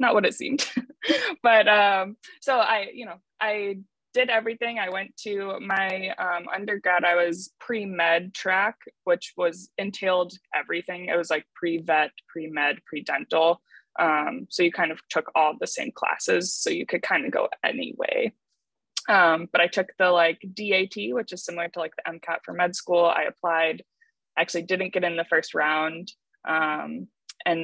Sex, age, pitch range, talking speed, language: female, 20-39, 170-225 Hz, 180 wpm, English